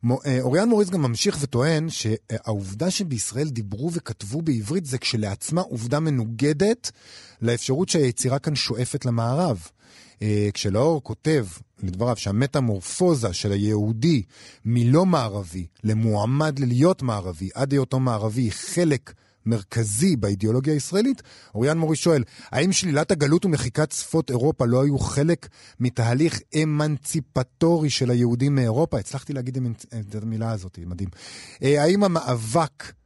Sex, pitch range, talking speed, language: male, 110-155 Hz, 115 wpm, Hebrew